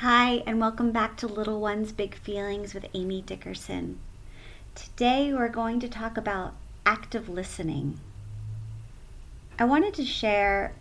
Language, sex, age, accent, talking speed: English, female, 30-49, American, 135 wpm